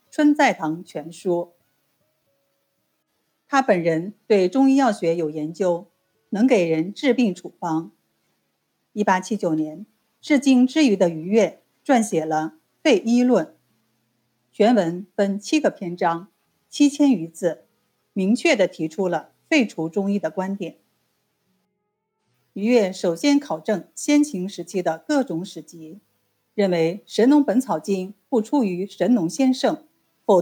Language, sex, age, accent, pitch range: Chinese, female, 50-69, native, 165-245 Hz